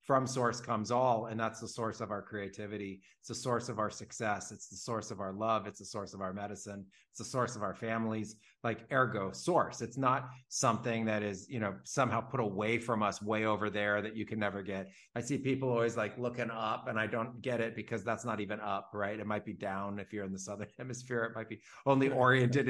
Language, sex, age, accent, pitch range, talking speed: English, male, 30-49, American, 105-125 Hz, 240 wpm